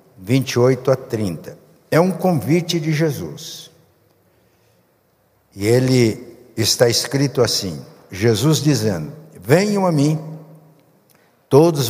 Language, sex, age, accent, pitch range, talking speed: Portuguese, male, 60-79, Brazilian, 125-160 Hz, 95 wpm